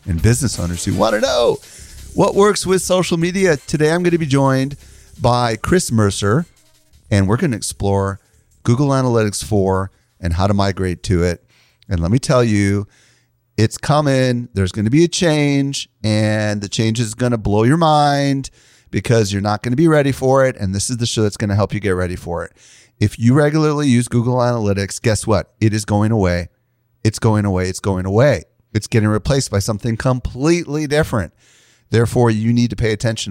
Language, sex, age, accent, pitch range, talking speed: English, male, 40-59, American, 100-125 Hz, 200 wpm